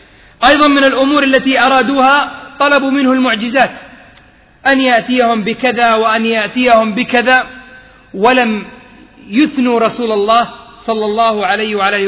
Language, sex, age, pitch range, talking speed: English, male, 40-59, 225-265 Hz, 110 wpm